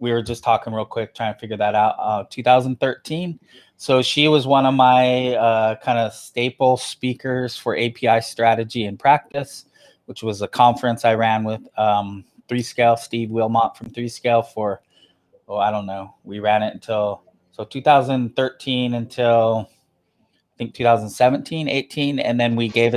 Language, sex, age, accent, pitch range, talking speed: English, male, 20-39, American, 105-125 Hz, 160 wpm